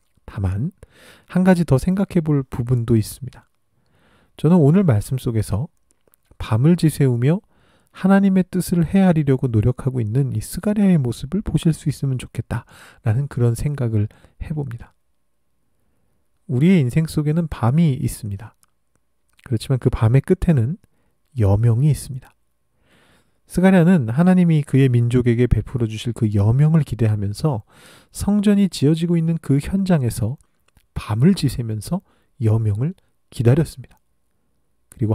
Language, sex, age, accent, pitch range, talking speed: English, male, 40-59, Korean, 115-170 Hz, 100 wpm